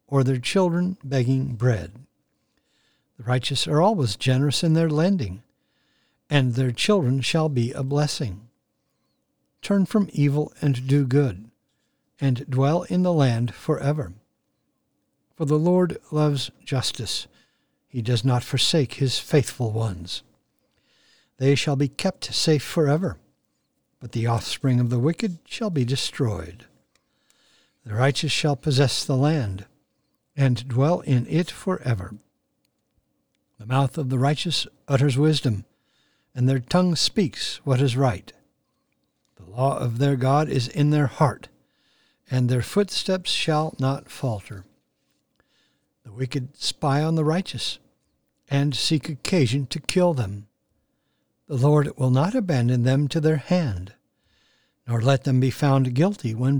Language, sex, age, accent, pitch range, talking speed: English, male, 60-79, American, 125-155 Hz, 135 wpm